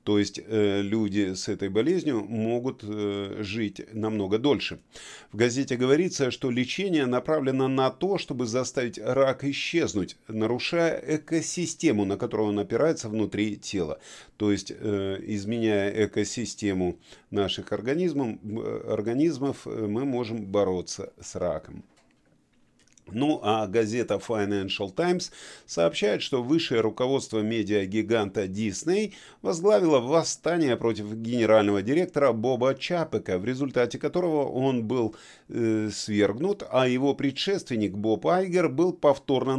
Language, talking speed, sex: Russian, 110 wpm, male